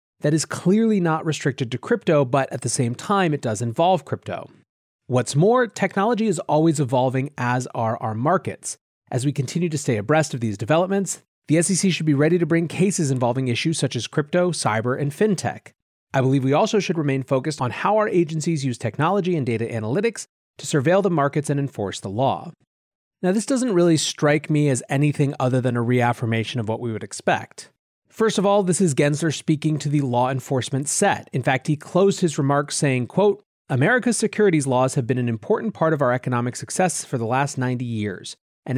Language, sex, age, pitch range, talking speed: English, male, 30-49, 125-175 Hz, 200 wpm